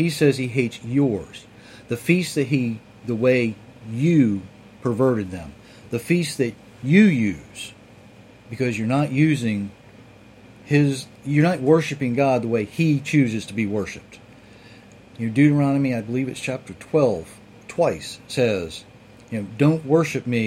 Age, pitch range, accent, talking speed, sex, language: 40-59, 110-135 Hz, American, 145 wpm, male, English